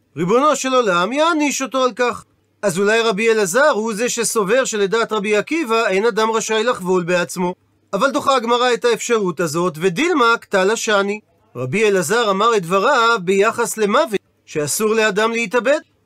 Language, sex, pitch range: Hebrew, male, 190-265 Hz